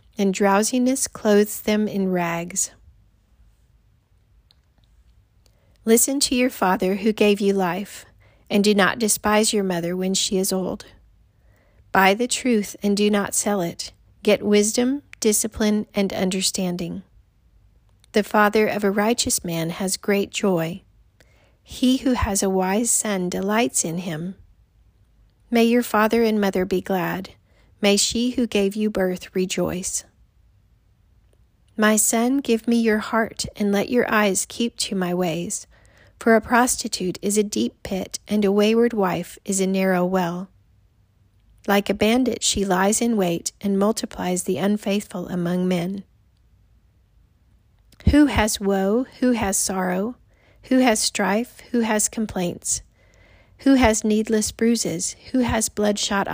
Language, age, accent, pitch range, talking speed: English, 40-59, American, 175-215 Hz, 140 wpm